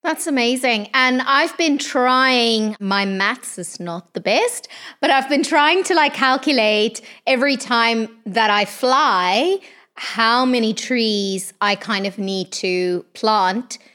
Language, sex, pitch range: English, female, 190-250 Hz